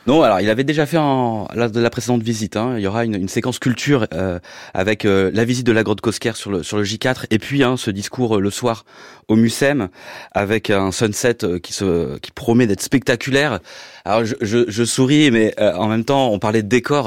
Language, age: French, 30-49